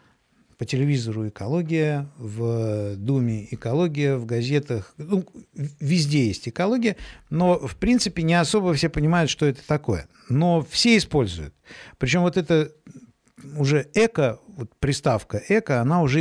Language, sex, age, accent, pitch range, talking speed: Russian, male, 50-69, native, 115-165 Hz, 130 wpm